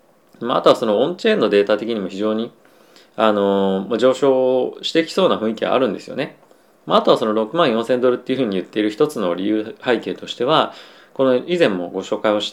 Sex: male